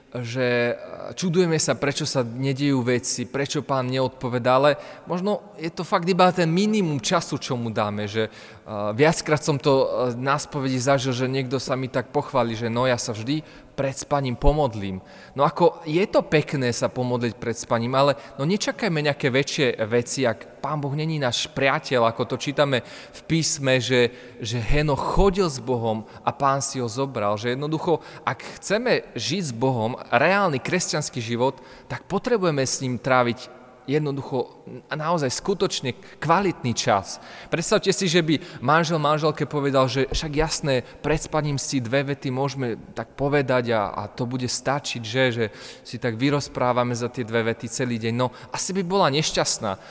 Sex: male